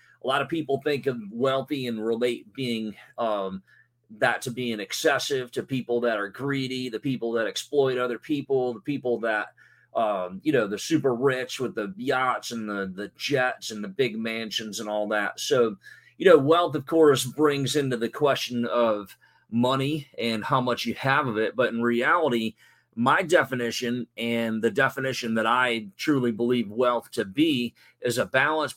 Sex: male